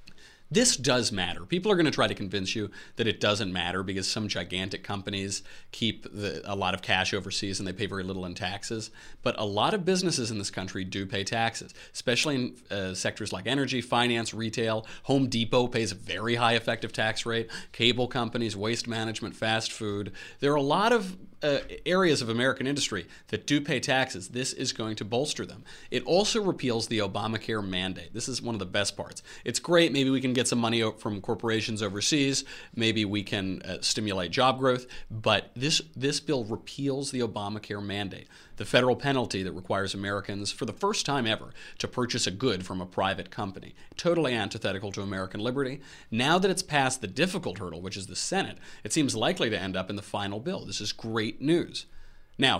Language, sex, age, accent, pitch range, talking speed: English, male, 30-49, American, 100-130 Hz, 200 wpm